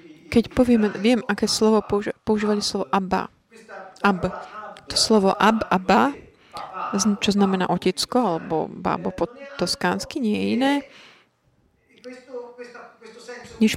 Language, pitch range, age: Slovak, 195-245 Hz, 20-39